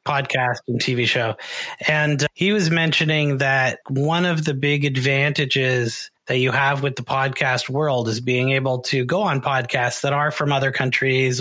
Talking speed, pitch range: 175 wpm, 130-150 Hz